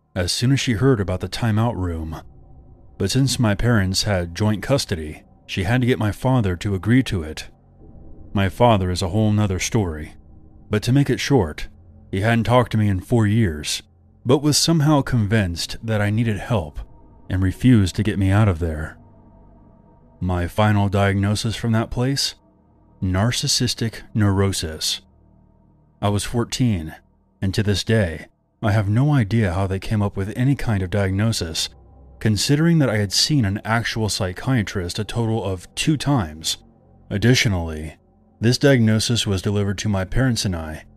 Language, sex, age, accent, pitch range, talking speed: English, male, 30-49, American, 95-115 Hz, 165 wpm